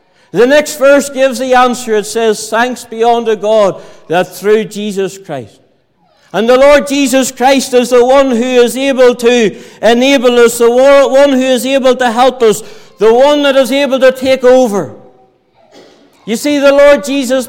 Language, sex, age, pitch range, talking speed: English, male, 60-79, 235-275 Hz, 175 wpm